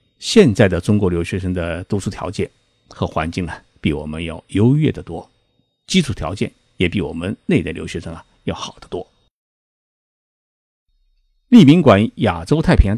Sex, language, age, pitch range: male, Chinese, 50-69, 85-115 Hz